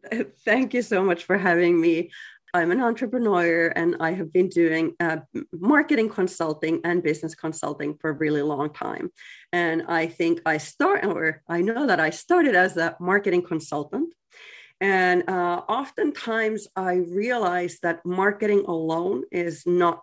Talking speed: 155 wpm